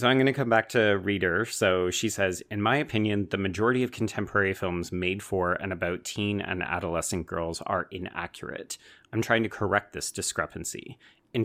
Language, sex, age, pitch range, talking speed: English, male, 30-49, 85-105 Hz, 190 wpm